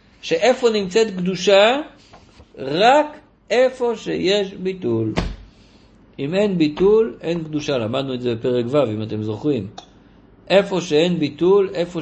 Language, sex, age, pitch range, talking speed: Hebrew, male, 50-69, 110-180 Hz, 120 wpm